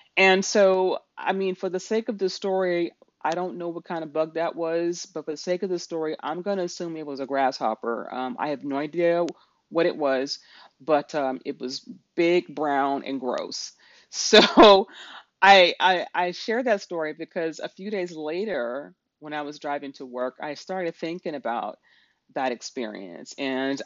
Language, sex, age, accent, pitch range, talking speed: English, female, 40-59, American, 145-190 Hz, 190 wpm